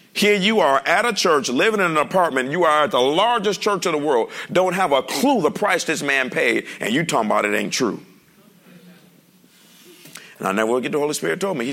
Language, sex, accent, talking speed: English, male, American, 230 wpm